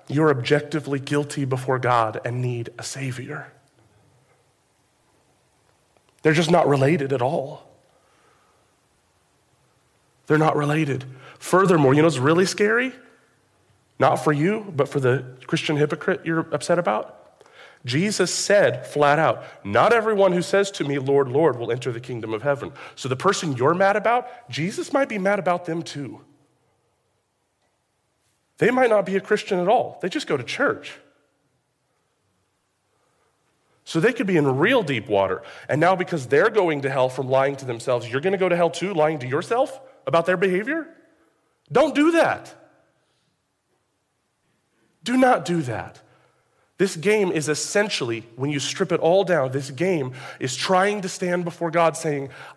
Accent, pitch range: American, 140-190 Hz